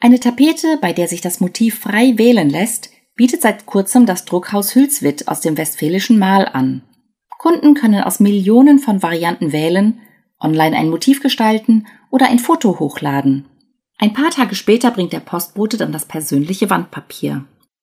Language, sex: German, female